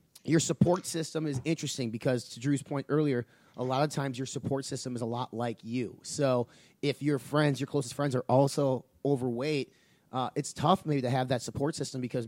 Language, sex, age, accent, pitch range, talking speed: English, male, 30-49, American, 120-145 Hz, 205 wpm